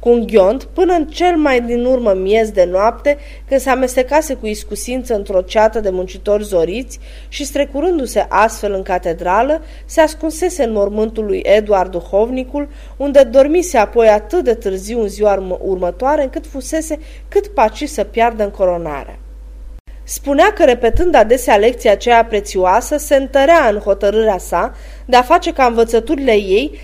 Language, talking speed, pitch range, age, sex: Romanian, 150 wpm, 200-275 Hz, 20-39, female